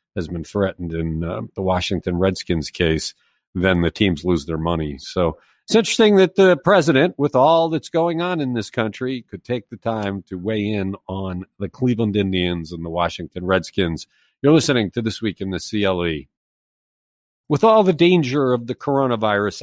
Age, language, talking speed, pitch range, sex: 50-69, English, 180 wpm, 95-140 Hz, male